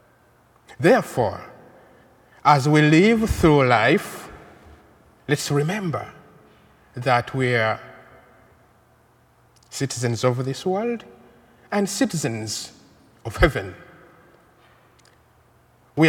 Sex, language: male, English